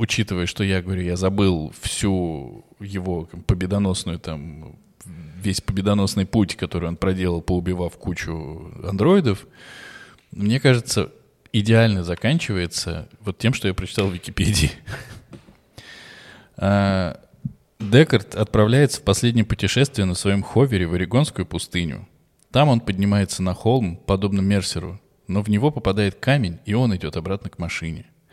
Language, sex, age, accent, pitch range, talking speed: Russian, male, 20-39, native, 90-115 Hz, 125 wpm